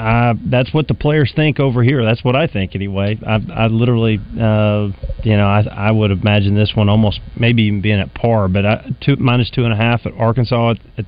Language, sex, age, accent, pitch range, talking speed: English, male, 40-59, American, 105-120 Hz, 215 wpm